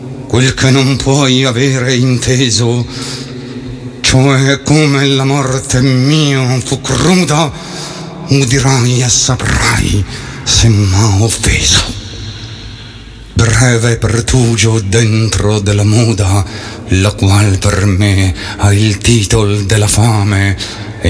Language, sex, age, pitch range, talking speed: Italian, male, 60-79, 105-125 Hz, 95 wpm